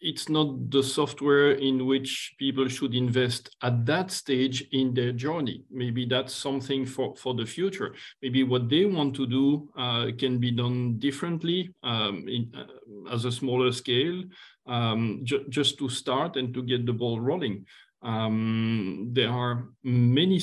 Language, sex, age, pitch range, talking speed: English, male, 50-69, 120-140 Hz, 160 wpm